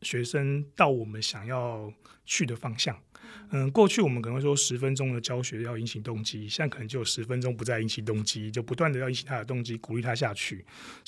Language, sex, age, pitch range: Chinese, male, 30-49, 115-150 Hz